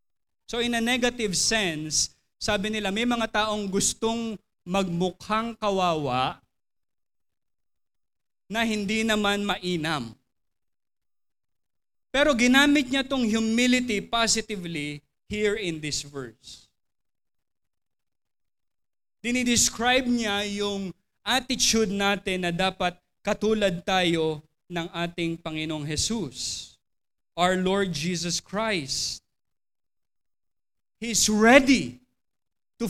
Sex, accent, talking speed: male, native, 90 wpm